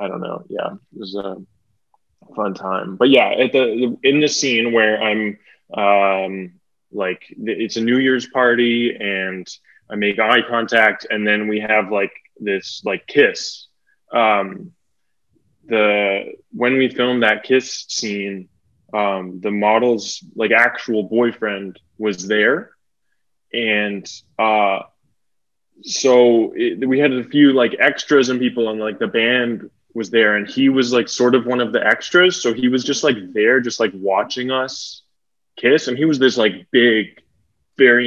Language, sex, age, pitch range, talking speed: English, male, 20-39, 105-130 Hz, 160 wpm